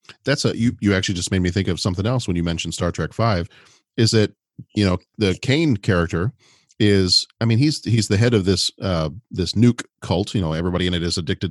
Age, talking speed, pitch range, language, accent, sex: 40-59, 235 wpm, 90-115 Hz, English, American, male